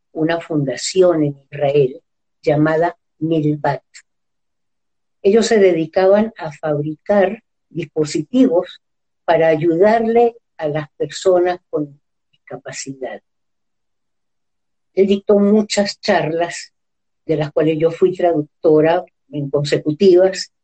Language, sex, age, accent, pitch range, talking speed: Spanish, female, 50-69, American, 150-190 Hz, 90 wpm